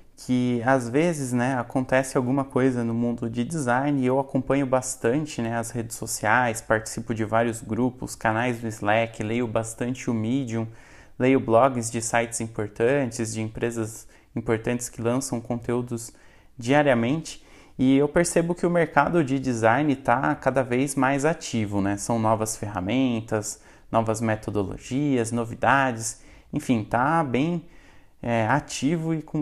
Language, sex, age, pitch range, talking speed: Portuguese, male, 20-39, 115-145 Hz, 140 wpm